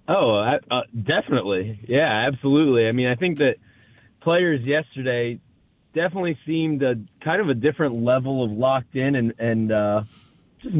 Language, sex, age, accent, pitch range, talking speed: English, male, 20-39, American, 130-155 Hz, 145 wpm